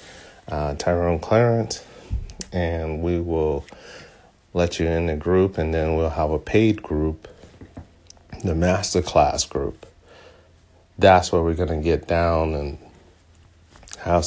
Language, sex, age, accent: English, male, 40-59, American